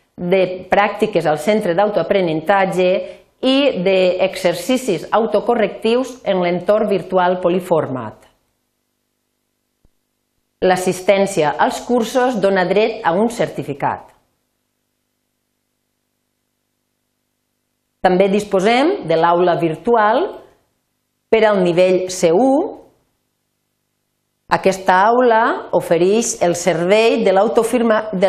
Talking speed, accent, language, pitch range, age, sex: 75 wpm, Spanish, Spanish, 170-215 Hz, 40-59, female